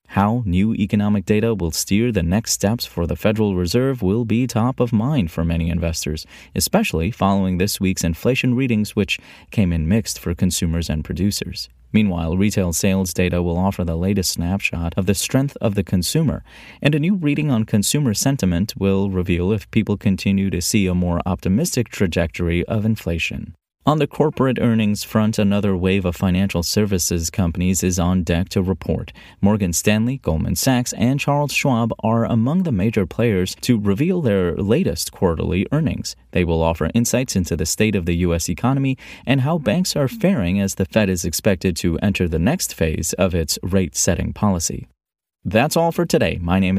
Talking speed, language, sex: 180 wpm, English, male